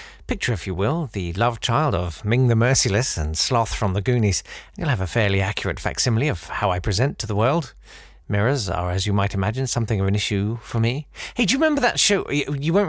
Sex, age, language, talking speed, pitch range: male, 40-59, English, 235 wpm, 105-155 Hz